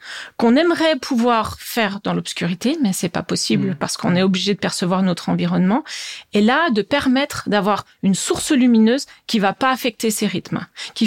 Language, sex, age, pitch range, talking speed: French, female, 40-59, 210-265 Hz, 190 wpm